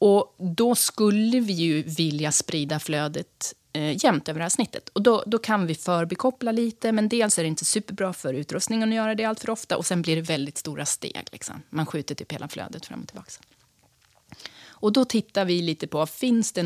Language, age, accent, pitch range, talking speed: Swedish, 30-49, native, 150-210 Hz, 215 wpm